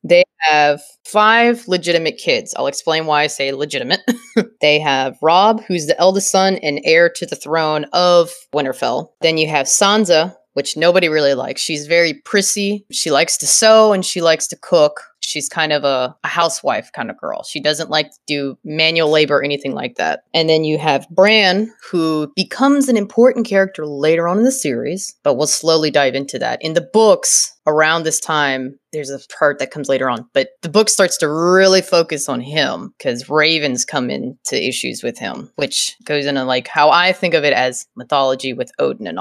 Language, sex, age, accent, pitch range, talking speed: English, female, 20-39, American, 145-190 Hz, 195 wpm